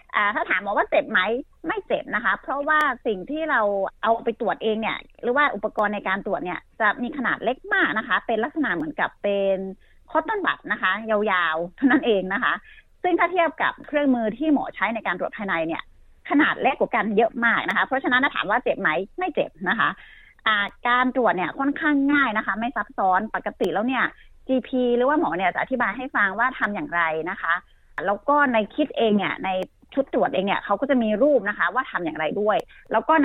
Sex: female